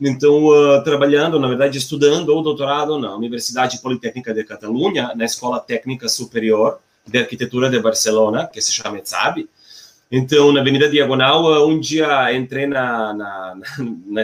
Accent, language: Brazilian, Portuguese